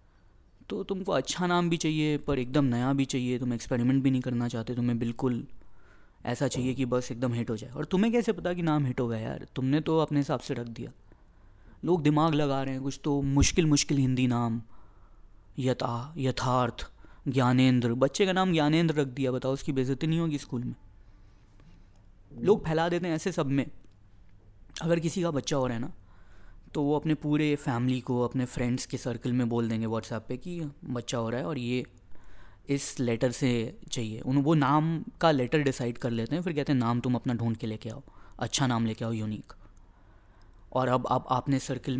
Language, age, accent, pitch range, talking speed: Hindi, 20-39, native, 110-140 Hz, 200 wpm